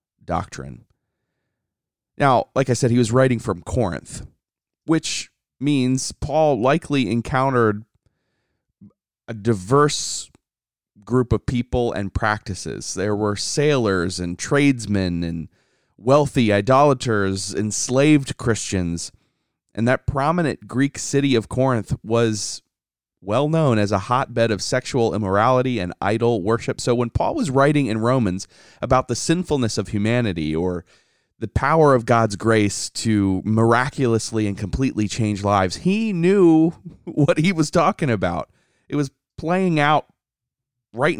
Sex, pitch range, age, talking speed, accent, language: male, 105-135 Hz, 30-49, 125 wpm, American, English